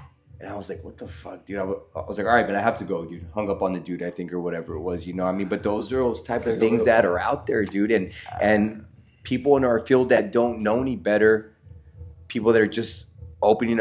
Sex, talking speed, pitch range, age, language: male, 275 wpm, 95-115 Hz, 20-39, English